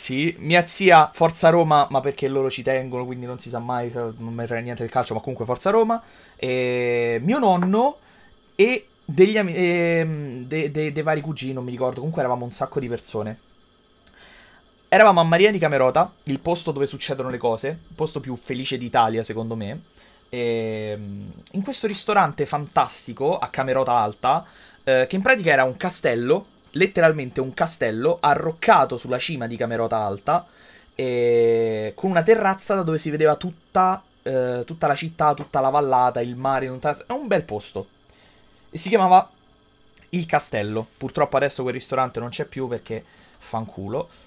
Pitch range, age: 120-165 Hz, 20-39